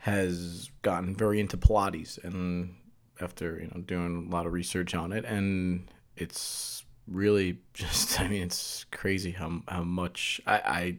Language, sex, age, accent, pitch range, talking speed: English, male, 30-49, American, 85-95 Hz, 160 wpm